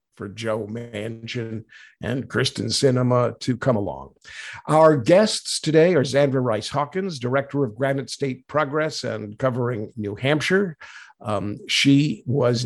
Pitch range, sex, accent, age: 120-150 Hz, male, American, 50-69